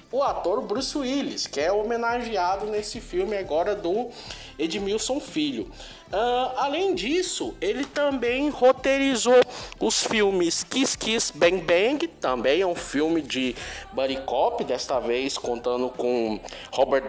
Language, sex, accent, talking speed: Portuguese, male, Brazilian, 130 wpm